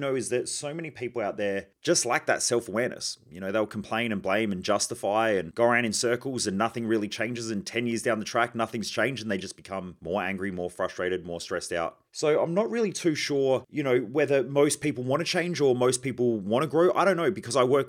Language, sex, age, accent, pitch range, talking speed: English, male, 30-49, Australian, 110-140 Hz, 250 wpm